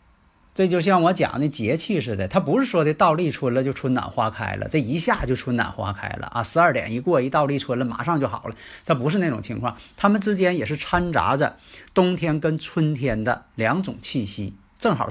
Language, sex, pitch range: Chinese, male, 110-155 Hz